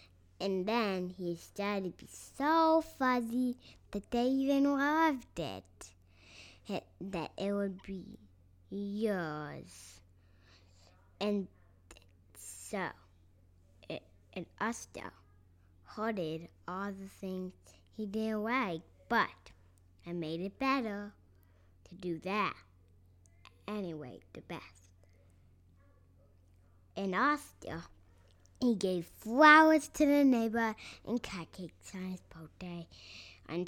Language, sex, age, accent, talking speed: English, female, 10-29, American, 95 wpm